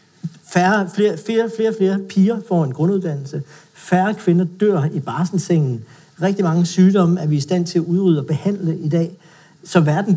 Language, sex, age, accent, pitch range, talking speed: Danish, male, 60-79, native, 150-190 Hz, 175 wpm